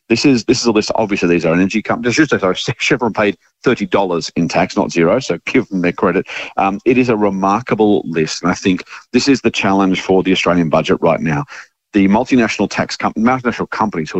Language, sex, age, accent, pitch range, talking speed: English, male, 40-59, Australian, 85-105 Hz, 215 wpm